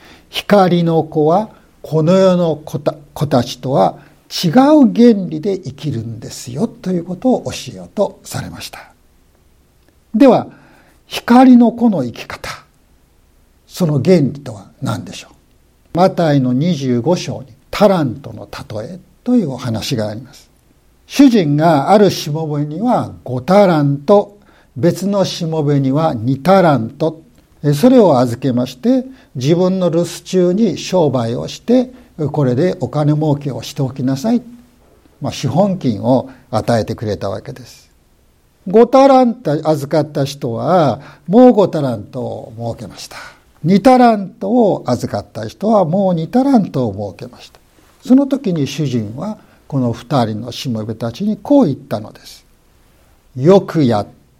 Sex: male